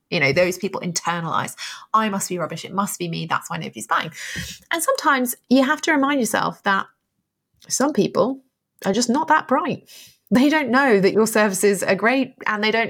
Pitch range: 185-250 Hz